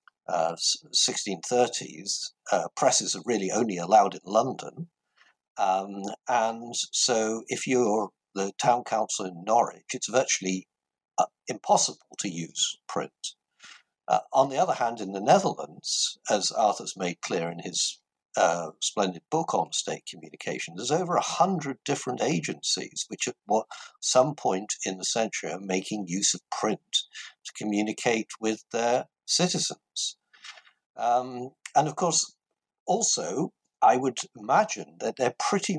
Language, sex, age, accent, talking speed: English, male, 60-79, British, 135 wpm